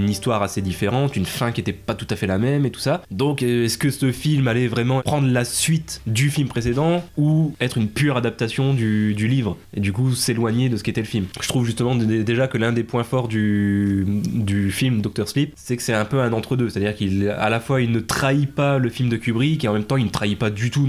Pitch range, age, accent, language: 105-130 Hz, 20-39, French, French